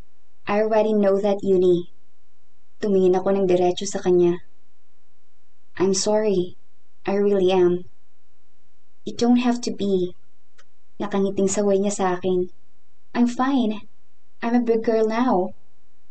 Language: Filipino